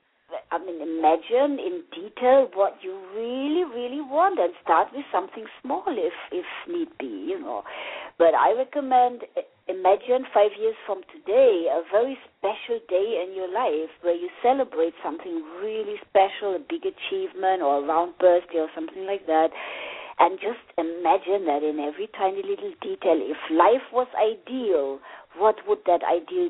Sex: female